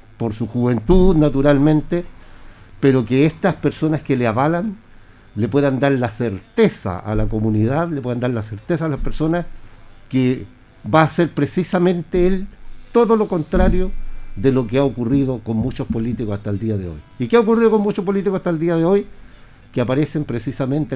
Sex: male